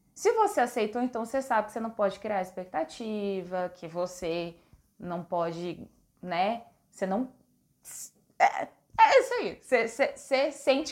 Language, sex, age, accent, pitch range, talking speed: Portuguese, female, 20-39, Brazilian, 195-280 Hz, 145 wpm